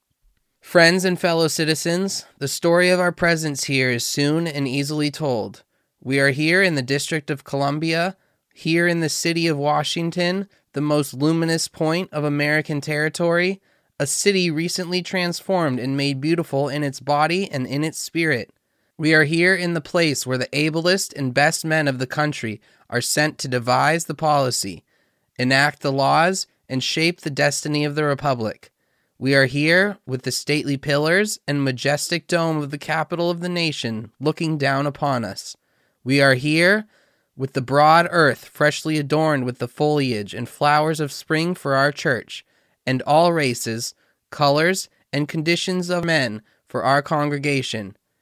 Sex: male